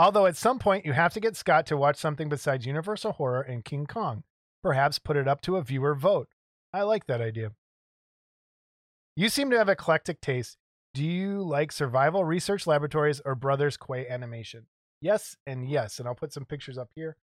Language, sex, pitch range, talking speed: English, male, 130-175 Hz, 195 wpm